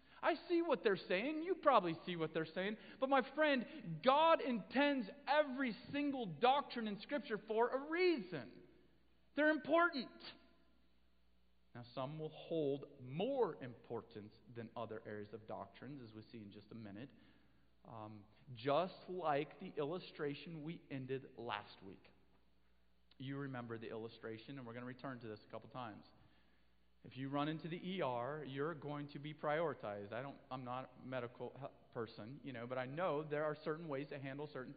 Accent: American